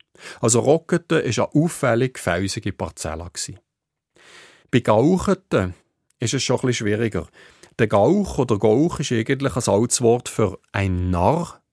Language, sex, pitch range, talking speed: German, male, 115-150 Hz, 130 wpm